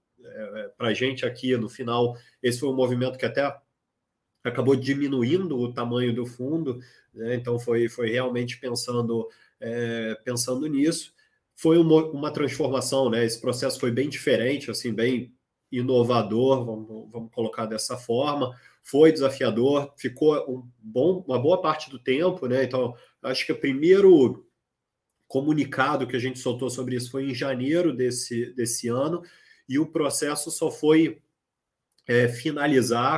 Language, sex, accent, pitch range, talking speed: Portuguese, male, Brazilian, 120-140 Hz, 145 wpm